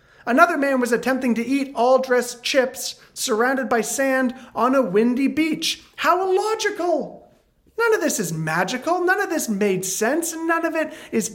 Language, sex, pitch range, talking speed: English, male, 155-225 Hz, 165 wpm